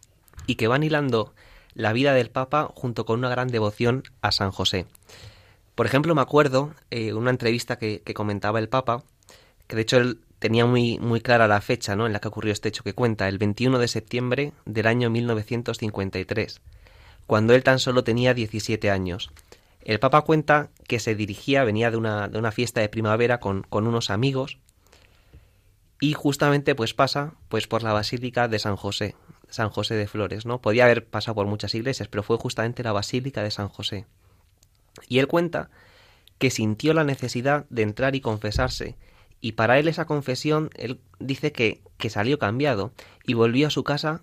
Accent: Spanish